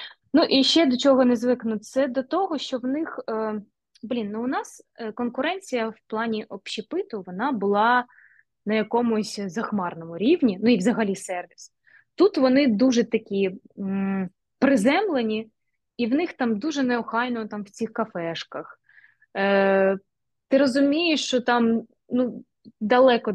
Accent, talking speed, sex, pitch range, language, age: native, 130 wpm, female, 200-255 Hz, Ukrainian, 20-39